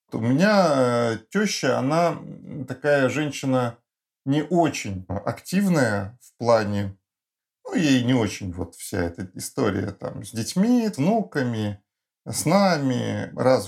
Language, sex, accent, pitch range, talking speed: Russian, male, native, 115-185 Hz, 120 wpm